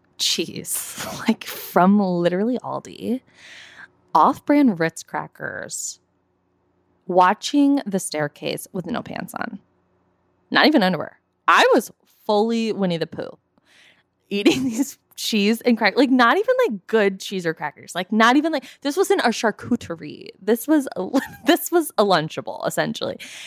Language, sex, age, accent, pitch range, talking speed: English, female, 20-39, American, 175-245 Hz, 135 wpm